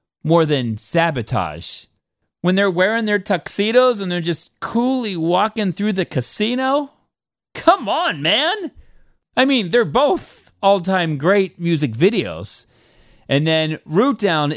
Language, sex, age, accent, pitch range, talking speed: English, male, 40-59, American, 125-195 Hz, 130 wpm